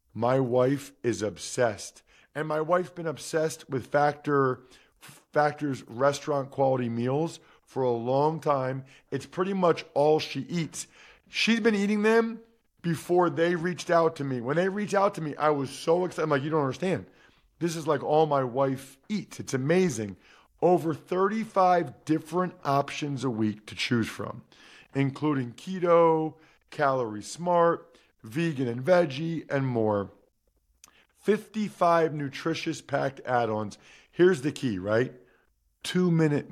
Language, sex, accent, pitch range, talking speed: English, male, American, 130-170 Hz, 140 wpm